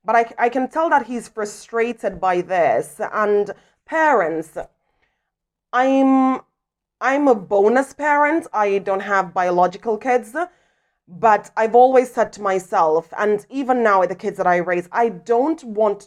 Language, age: English, 20-39